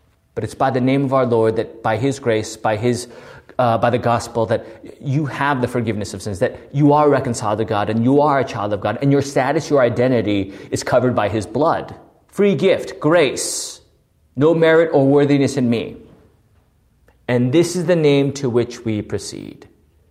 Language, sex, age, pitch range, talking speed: English, male, 30-49, 110-140 Hz, 195 wpm